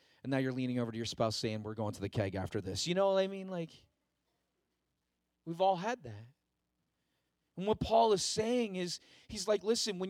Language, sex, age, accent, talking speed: English, male, 40-59, American, 215 wpm